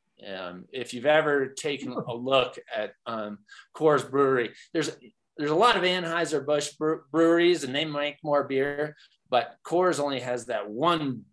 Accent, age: American, 30-49